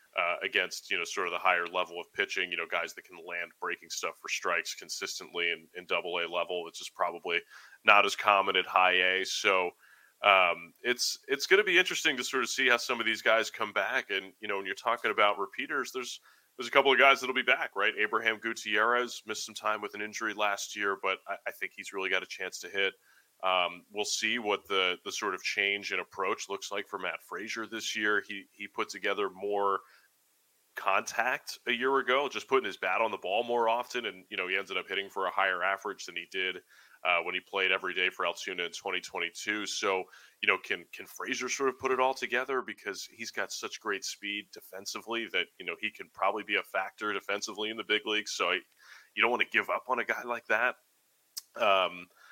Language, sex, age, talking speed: English, male, 30-49, 230 wpm